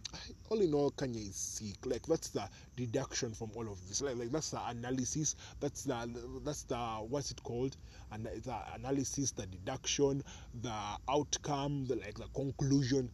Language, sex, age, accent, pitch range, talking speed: English, male, 20-39, Nigerian, 105-140 Hz, 170 wpm